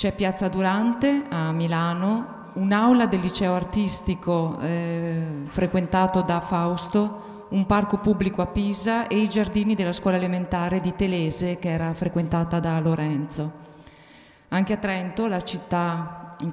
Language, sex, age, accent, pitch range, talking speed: Italian, female, 30-49, native, 175-205 Hz, 135 wpm